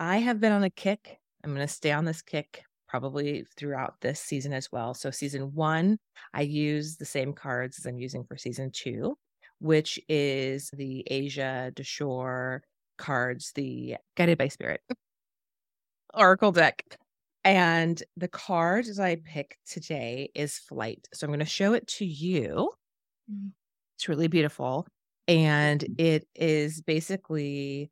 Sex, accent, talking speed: female, American, 145 wpm